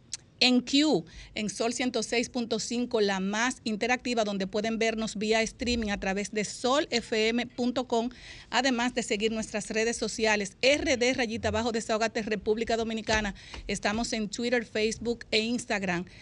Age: 40-59